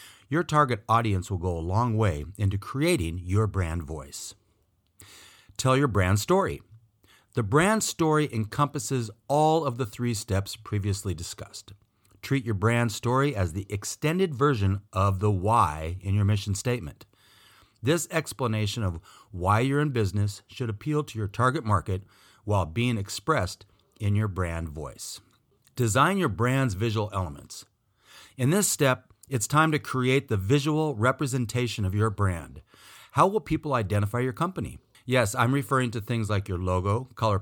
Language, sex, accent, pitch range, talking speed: English, male, American, 95-130 Hz, 155 wpm